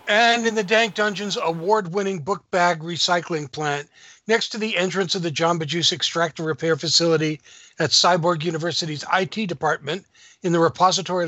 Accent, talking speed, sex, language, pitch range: American, 155 wpm, male, English, 140-185 Hz